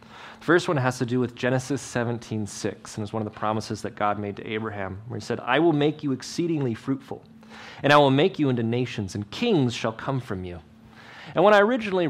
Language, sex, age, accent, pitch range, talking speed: English, male, 30-49, American, 120-205 Hz, 230 wpm